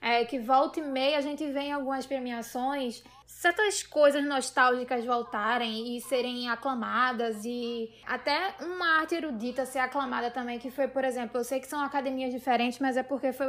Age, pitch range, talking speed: 10-29, 245-295 Hz, 175 wpm